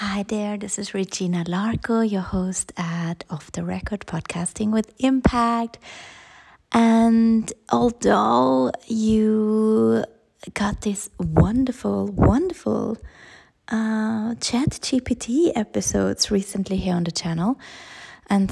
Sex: female